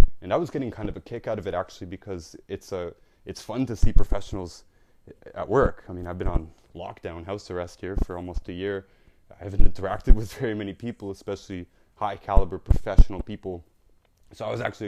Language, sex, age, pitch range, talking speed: English, male, 20-39, 90-105 Hz, 200 wpm